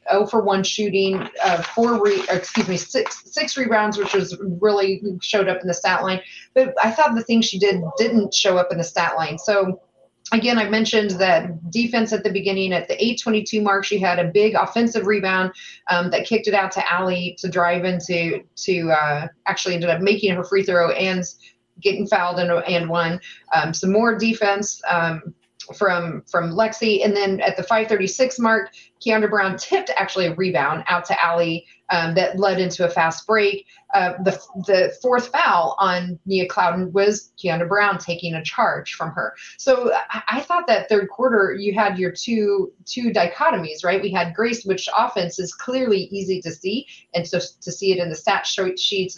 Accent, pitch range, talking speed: American, 175-215 Hz, 190 wpm